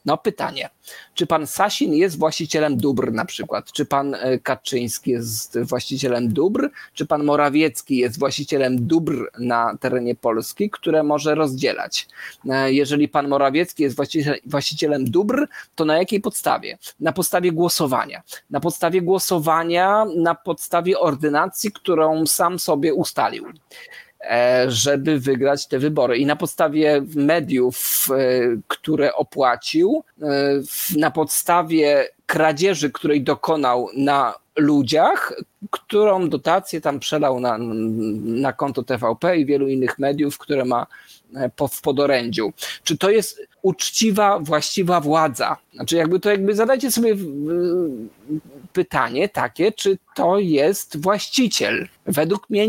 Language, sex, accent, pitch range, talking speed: Polish, male, native, 135-180 Hz, 120 wpm